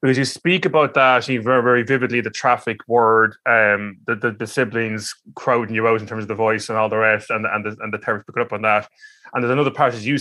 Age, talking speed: 20-39, 265 wpm